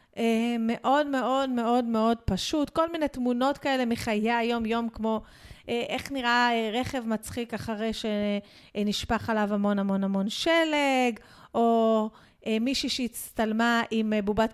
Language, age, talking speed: Hebrew, 40-59, 120 wpm